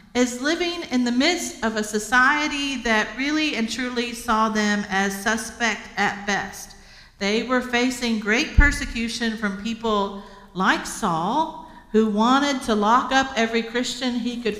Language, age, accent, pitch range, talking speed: English, 50-69, American, 195-250 Hz, 150 wpm